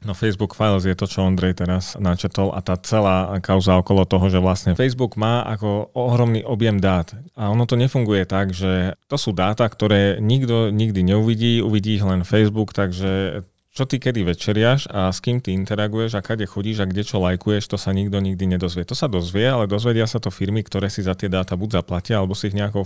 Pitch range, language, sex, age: 95-110 Hz, Slovak, male, 30-49